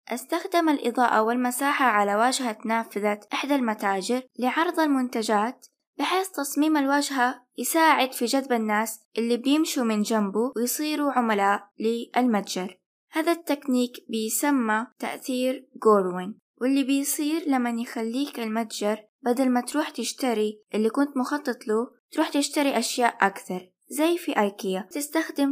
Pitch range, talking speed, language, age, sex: 215-275 Hz, 120 wpm, Arabic, 20-39, female